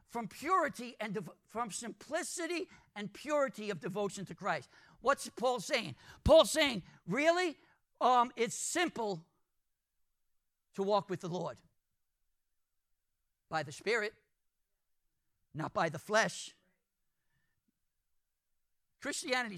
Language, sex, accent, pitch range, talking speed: English, male, American, 190-285 Hz, 100 wpm